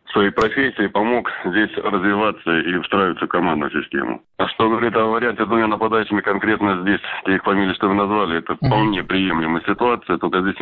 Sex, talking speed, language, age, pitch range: male, 170 wpm, Russian, 20-39, 95-110 Hz